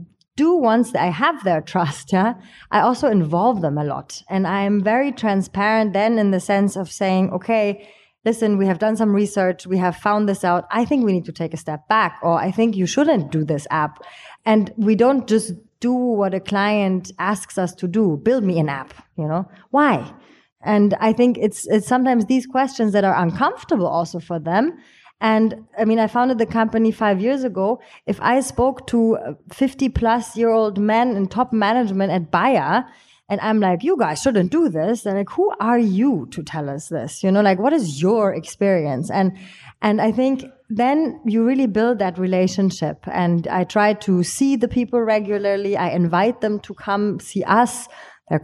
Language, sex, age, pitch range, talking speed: English, female, 20-39, 185-235 Hz, 195 wpm